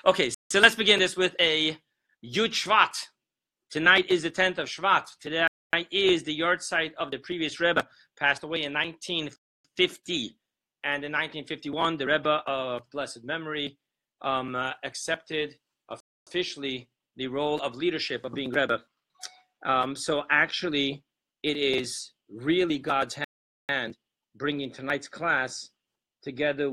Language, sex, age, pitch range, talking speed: English, male, 40-59, 140-165 Hz, 130 wpm